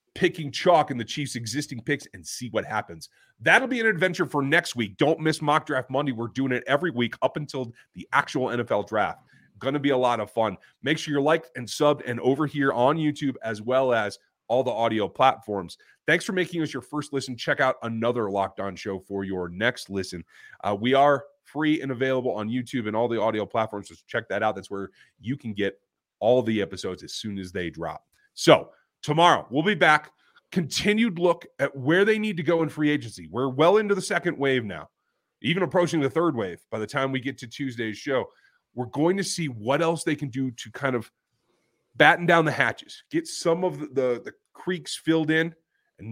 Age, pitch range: 30-49, 110-155 Hz